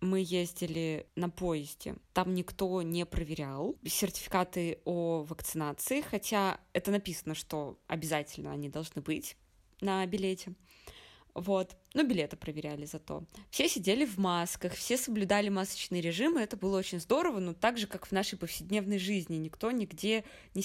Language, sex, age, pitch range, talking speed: Russian, female, 20-39, 165-205 Hz, 140 wpm